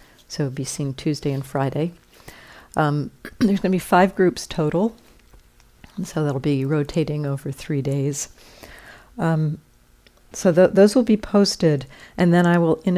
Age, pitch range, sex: 50-69, 145-175 Hz, female